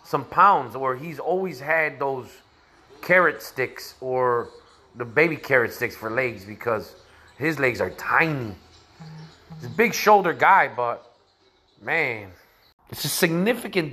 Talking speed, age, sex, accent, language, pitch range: 135 wpm, 30-49, male, American, English, 160-225 Hz